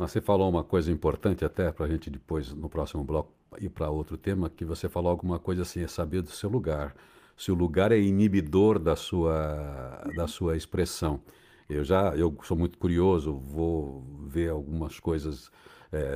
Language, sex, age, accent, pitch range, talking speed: Portuguese, male, 60-79, Brazilian, 85-105 Hz, 185 wpm